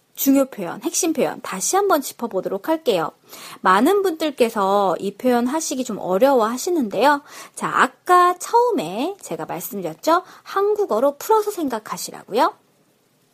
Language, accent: Korean, native